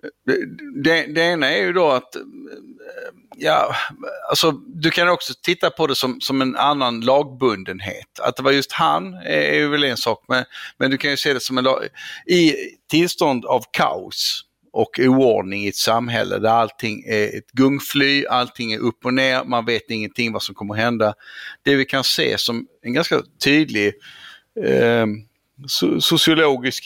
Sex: male